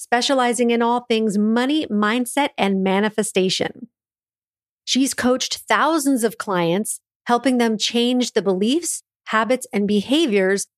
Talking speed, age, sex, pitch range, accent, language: 115 wpm, 40-59, female, 195-250 Hz, American, English